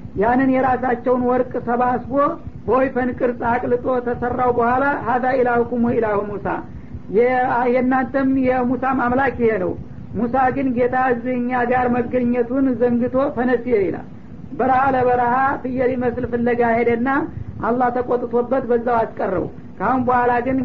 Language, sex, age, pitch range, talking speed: Amharic, female, 60-79, 235-255 Hz, 125 wpm